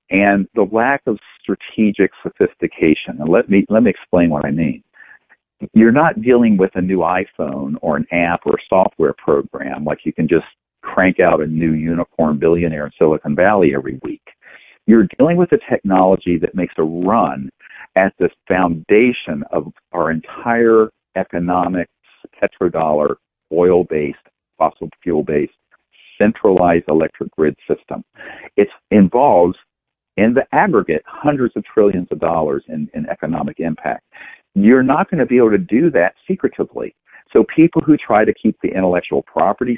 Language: English